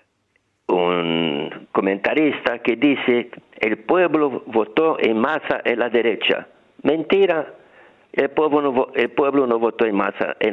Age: 60-79